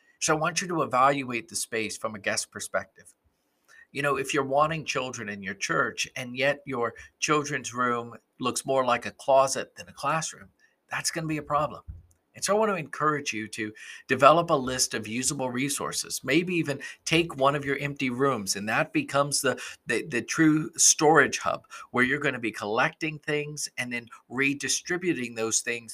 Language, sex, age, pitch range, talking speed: English, male, 50-69, 120-150 Hz, 190 wpm